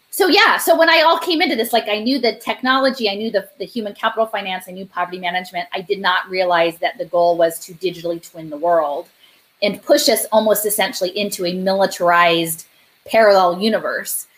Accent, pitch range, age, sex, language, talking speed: American, 180-225 Hz, 20-39, female, English, 200 wpm